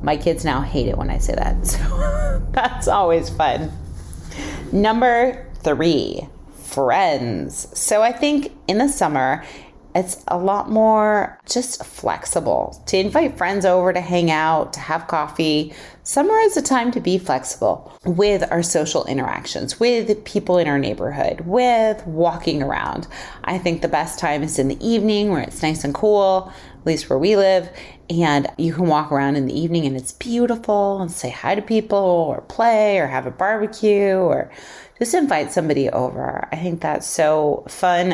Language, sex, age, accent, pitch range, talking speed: English, female, 30-49, American, 150-210 Hz, 170 wpm